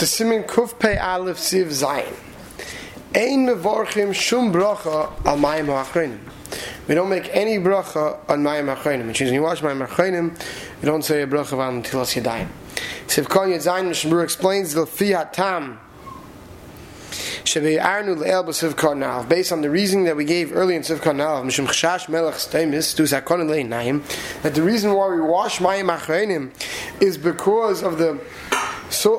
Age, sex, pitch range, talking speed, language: 20-39, male, 160-210 Hz, 105 wpm, English